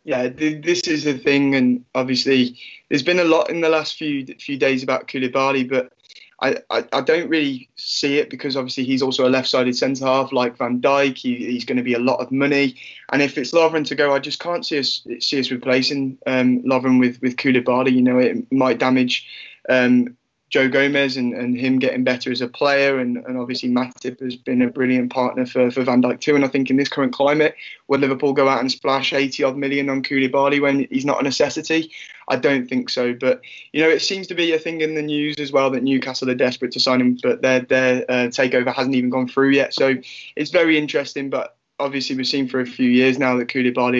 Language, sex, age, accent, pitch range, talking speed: English, male, 20-39, British, 125-140 Hz, 230 wpm